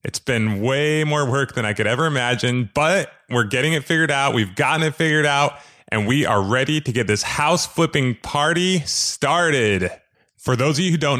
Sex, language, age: male, English, 20-39